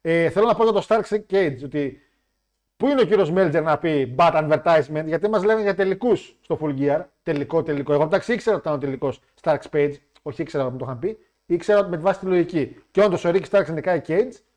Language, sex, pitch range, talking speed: Greek, male, 140-205 Hz, 235 wpm